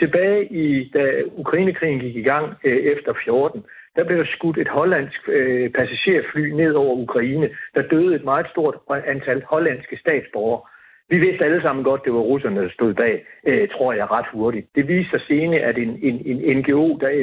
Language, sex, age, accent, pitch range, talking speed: Danish, male, 60-79, native, 130-175 Hz, 190 wpm